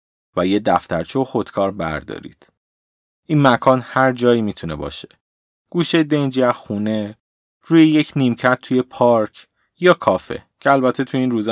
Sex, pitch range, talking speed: male, 105-135 Hz, 140 wpm